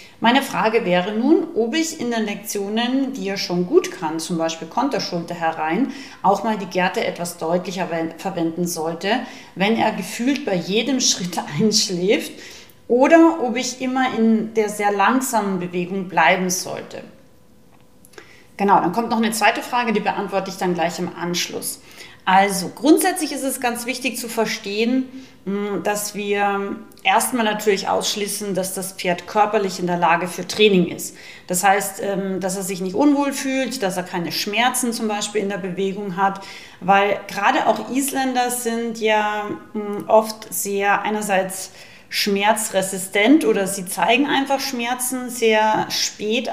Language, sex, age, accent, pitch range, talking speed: German, female, 30-49, German, 195-235 Hz, 150 wpm